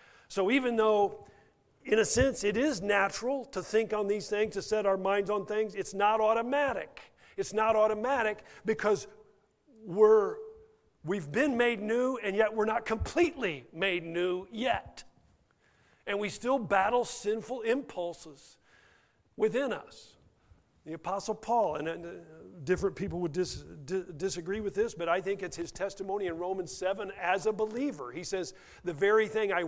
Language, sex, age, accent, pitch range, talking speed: English, male, 50-69, American, 185-240 Hz, 155 wpm